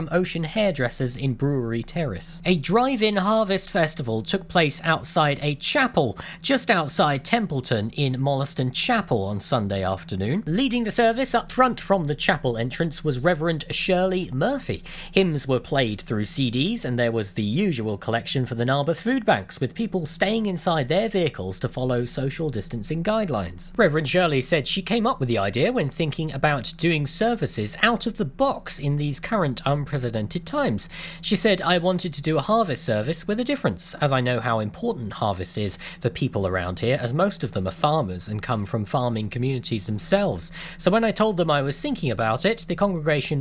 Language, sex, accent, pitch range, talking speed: English, male, British, 125-185 Hz, 180 wpm